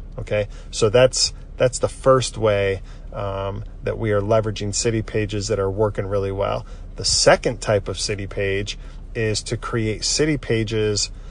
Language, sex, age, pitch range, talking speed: English, male, 40-59, 100-115 Hz, 160 wpm